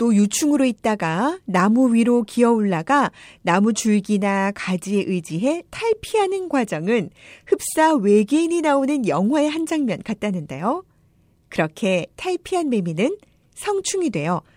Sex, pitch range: female, 210-340 Hz